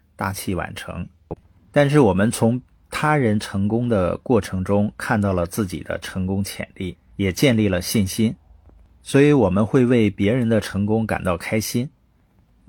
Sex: male